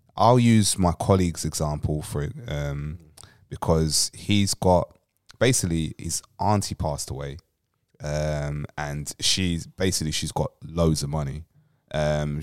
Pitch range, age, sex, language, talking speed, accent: 75-90 Hz, 20-39, male, English, 125 wpm, British